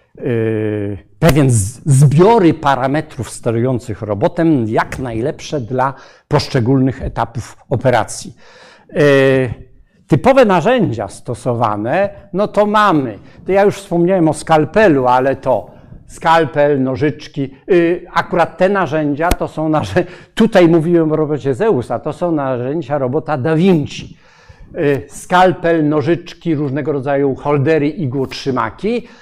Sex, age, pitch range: male, 60-79, 130-165 Hz